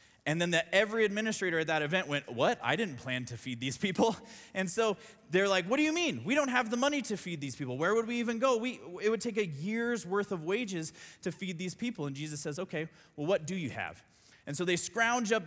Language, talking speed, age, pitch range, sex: English, 250 wpm, 20-39, 140-210 Hz, male